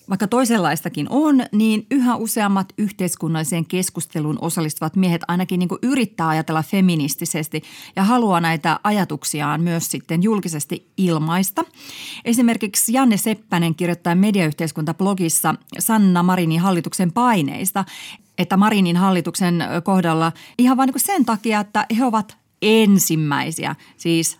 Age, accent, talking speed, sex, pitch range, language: 30-49, native, 110 wpm, female, 165-210 Hz, Finnish